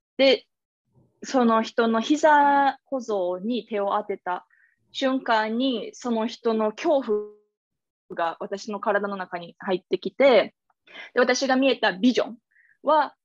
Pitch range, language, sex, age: 200-255 Hz, Japanese, female, 20-39